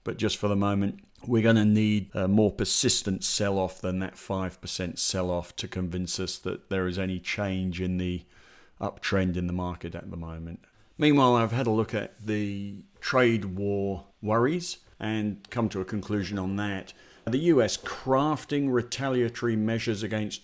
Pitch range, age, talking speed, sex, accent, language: 95-110 Hz, 50-69, 165 wpm, male, British, English